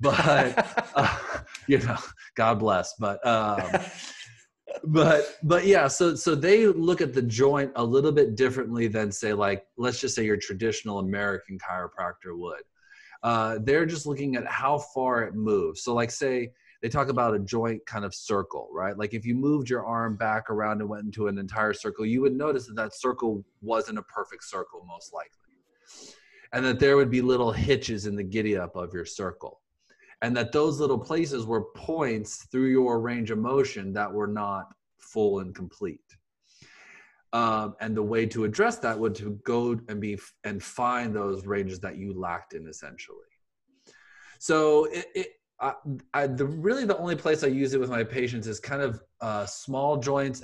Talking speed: 180 wpm